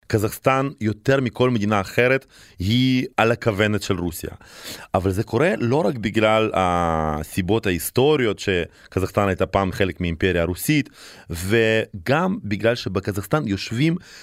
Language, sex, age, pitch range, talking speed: Hebrew, male, 30-49, 100-125 Hz, 120 wpm